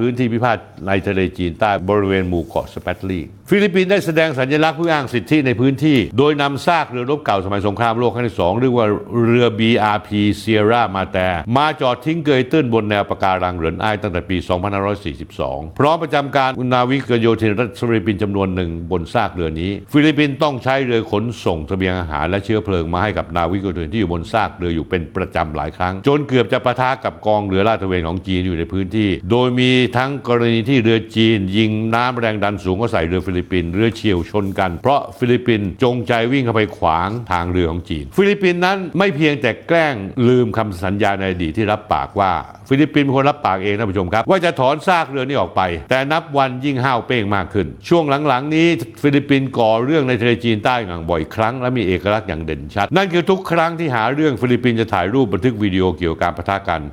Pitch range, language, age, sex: 95-135 Hz, Thai, 60-79, male